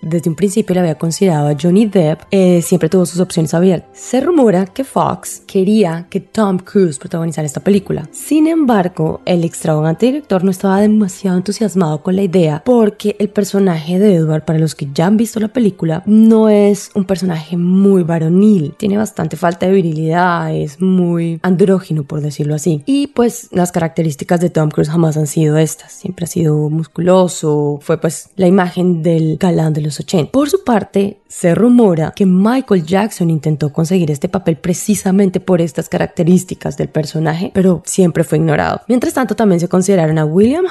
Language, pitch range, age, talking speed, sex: Spanish, 160-205 Hz, 20-39, 175 wpm, female